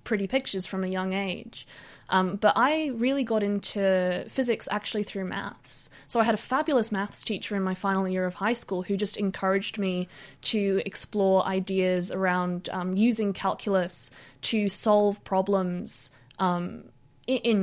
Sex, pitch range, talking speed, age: female, 190-225 Hz, 155 wpm, 20-39